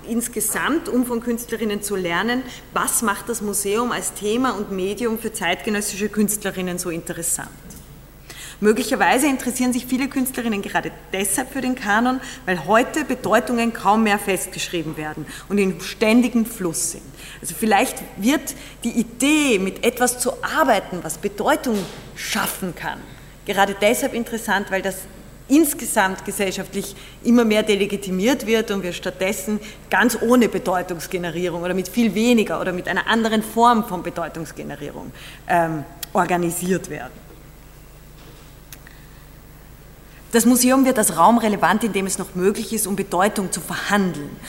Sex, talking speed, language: female, 135 wpm, German